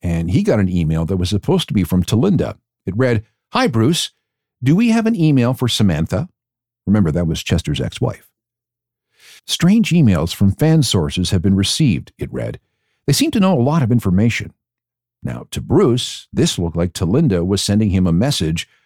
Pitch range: 100-125 Hz